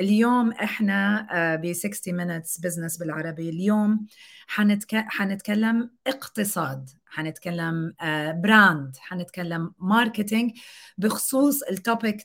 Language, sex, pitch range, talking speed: Arabic, female, 185-245 Hz, 85 wpm